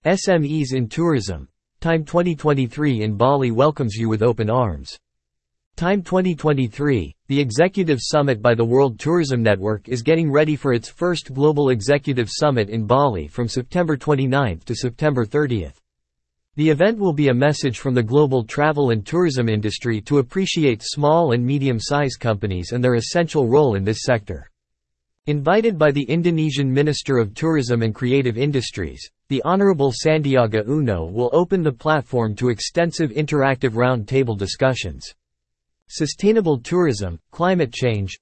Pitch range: 110-150 Hz